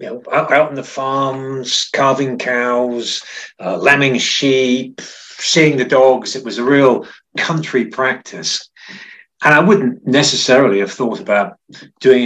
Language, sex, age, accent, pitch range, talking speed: English, male, 50-69, British, 115-150 Hz, 140 wpm